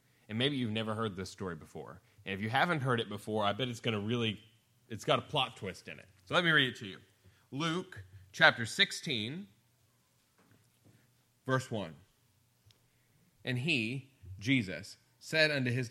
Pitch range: 110-140 Hz